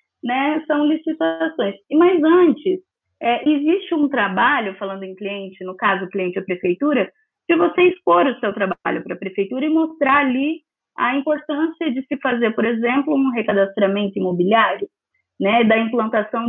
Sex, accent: female, Brazilian